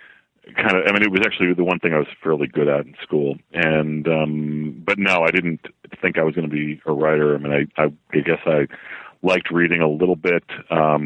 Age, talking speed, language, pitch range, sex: 40-59, 240 wpm, English, 70-85 Hz, male